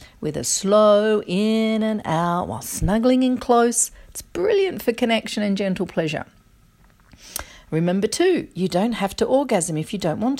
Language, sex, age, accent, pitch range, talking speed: English, female, 40-59, Australian, 180-230 Hz, 160 wpm